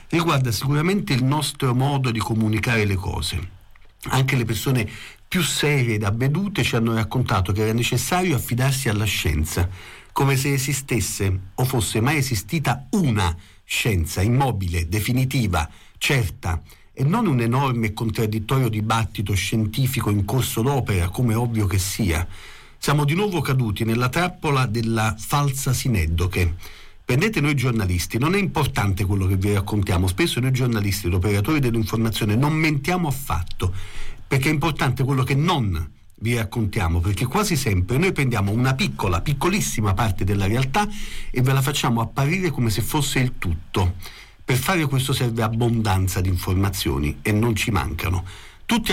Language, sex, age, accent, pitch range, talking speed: Italian, male, 50-69, native, 100-135 Hz, 150 wpm